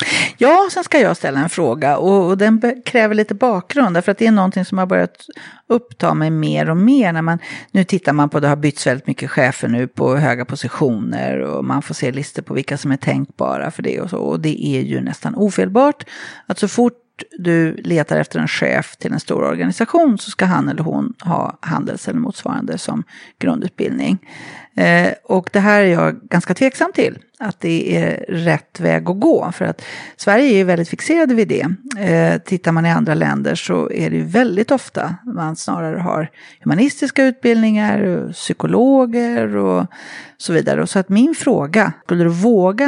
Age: 40-59